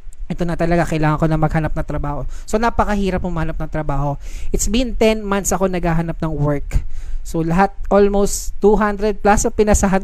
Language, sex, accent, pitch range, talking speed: Filipino, male, native, 160-210 Hz, 180 wpm